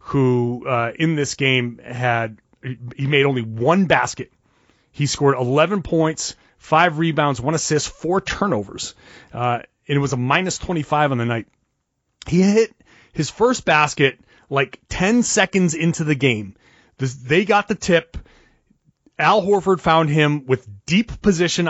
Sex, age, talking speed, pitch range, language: male, 30-49, 150 wpm, 135-200 Hz, English